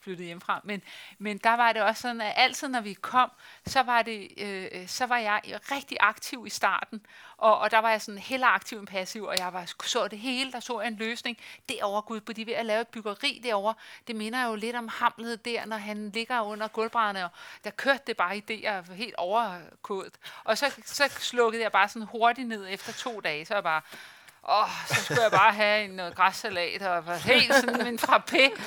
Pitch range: 205-255 Hz